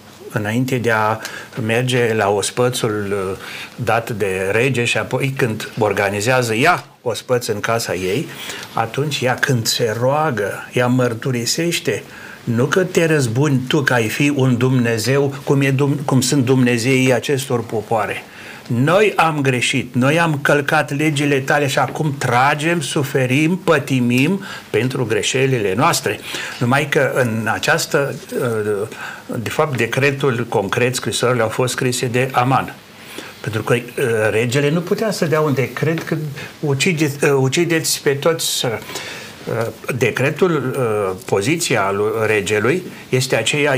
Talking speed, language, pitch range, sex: 125 wpm, Romanian, 120-155 Hz, male